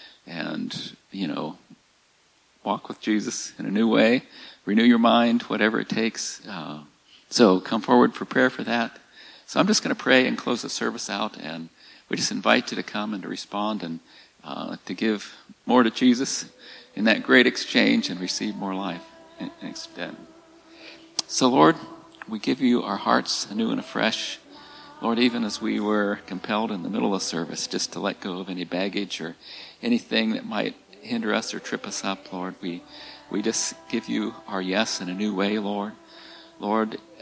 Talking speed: 180 wpm